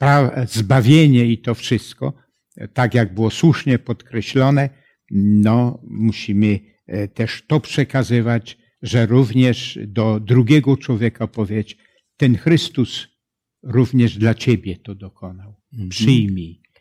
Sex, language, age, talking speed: male, Polish, 70-89, 95 wpm